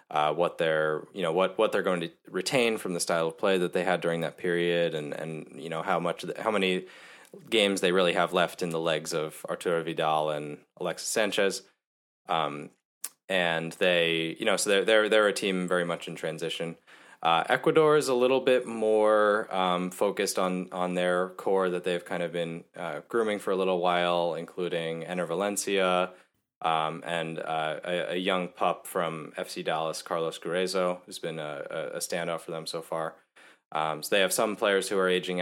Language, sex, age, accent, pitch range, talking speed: English, male, 20-39, American, 80-95 Hz, 195 wpm